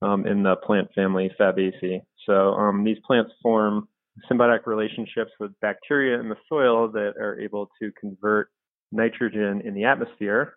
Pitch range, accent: 95-110 Hz, American